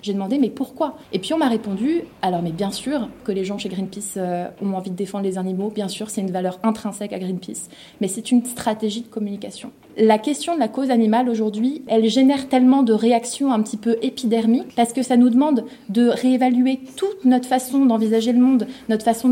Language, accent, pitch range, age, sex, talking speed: French, French, 220-255 Hz, 20-39, female, 230 wpm